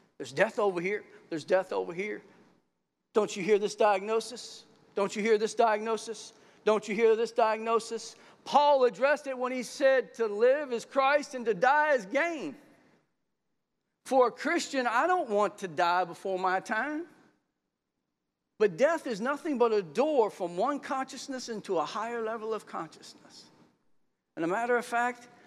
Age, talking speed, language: 50-69, 165 wpm, English